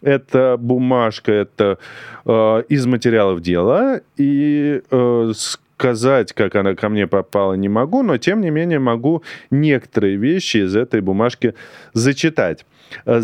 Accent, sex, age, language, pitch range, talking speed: native, male, 30-49, Russian, 105-140 Hz, 125 wpm